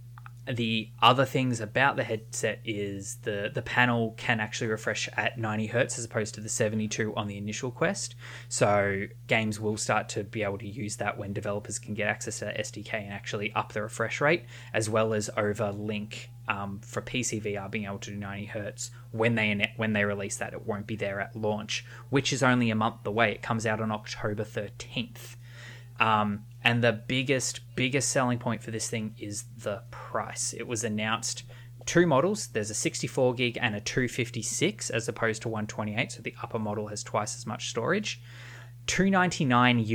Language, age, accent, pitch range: English, 20-39, Australian, 105-120 Hz